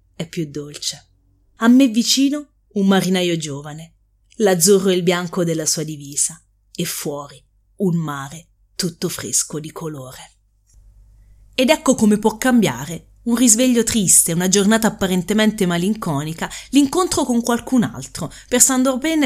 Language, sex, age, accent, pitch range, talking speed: Italian, female, 30-49, native, 145-225 Hz, 135 wpm